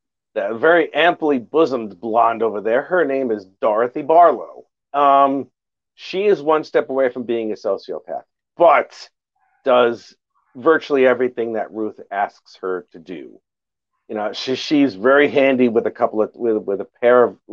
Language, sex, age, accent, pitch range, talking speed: English, male, 50-69, American, 110-140 Hz, 160 wpm